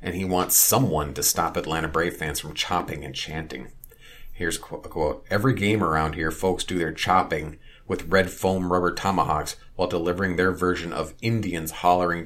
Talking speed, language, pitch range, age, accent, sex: 175 wpm, English, 80-95 Hz, 40-59, American, male